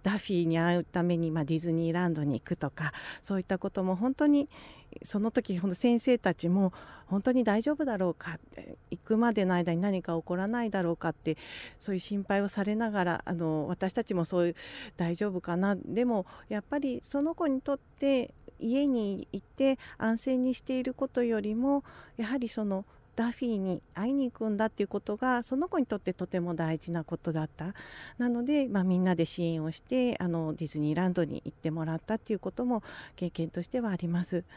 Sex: female